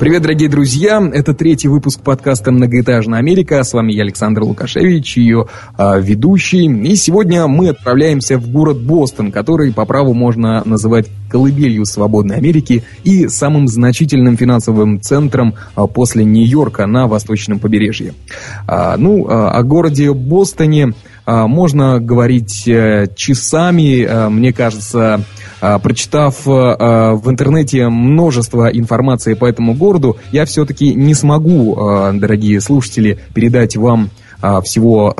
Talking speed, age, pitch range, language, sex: 115 wpm, 20-39, 105-140 Hz, Russian, male